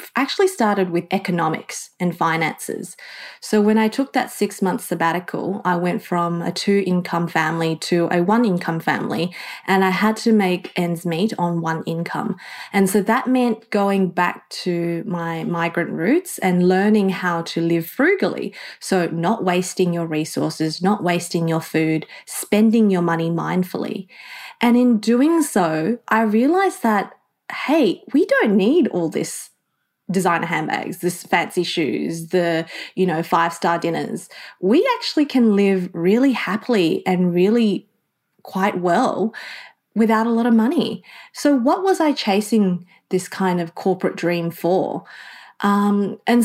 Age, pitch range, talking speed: 20-39, 170-225 Hz, 150 wpm